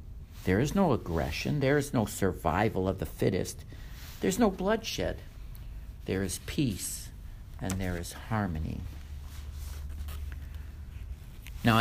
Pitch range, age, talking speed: 90-130 Hz, 60-79, 110 wpm